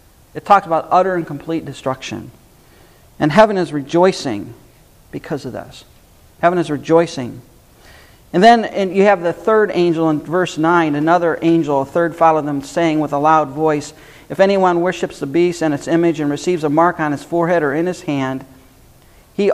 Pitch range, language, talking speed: 145-170 Hz, English, 180 wpm